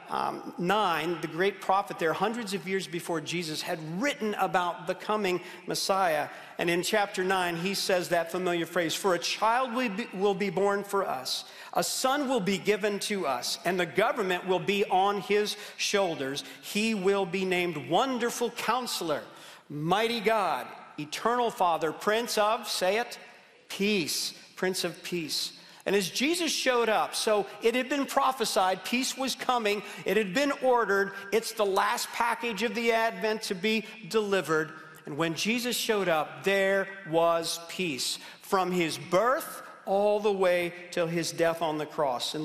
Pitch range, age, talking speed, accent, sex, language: 175-220 Hz, 50-69, 165 wpm, American, male, English